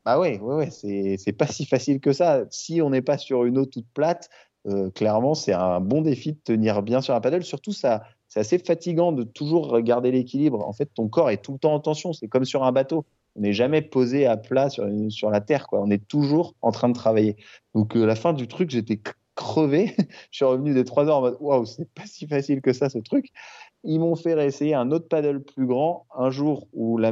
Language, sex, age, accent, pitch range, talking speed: French, male, 20-39, French, 105-140 Hz, 250 wpm